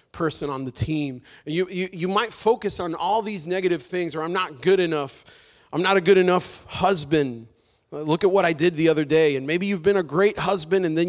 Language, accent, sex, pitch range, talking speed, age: English, American, male, 160-210 Hz, 220 wpm, 30-49